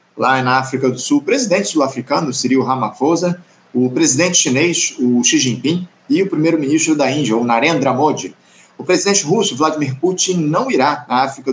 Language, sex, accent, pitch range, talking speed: Portuguese, male, Brazilian, 130-190 Hz, 170 wpm